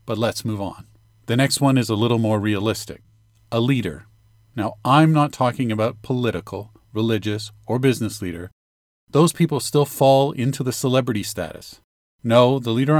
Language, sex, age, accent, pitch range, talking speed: English, male, 40-59, American, 105-125 Hz, 160 wpm